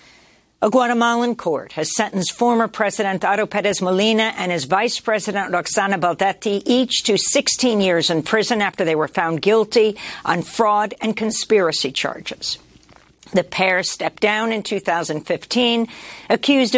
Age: 60-79